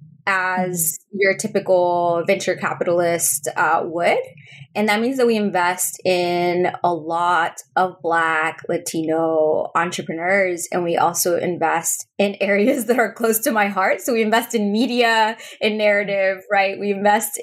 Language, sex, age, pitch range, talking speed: English, female, 20-39, 175-205 Hz, 145 wpm